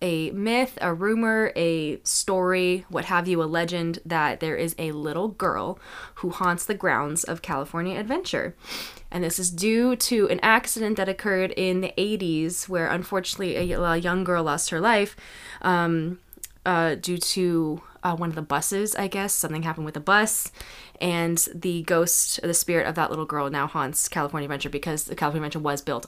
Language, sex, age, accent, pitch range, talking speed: English, female, 20-39, American, 160-185 Hz, 175 wpm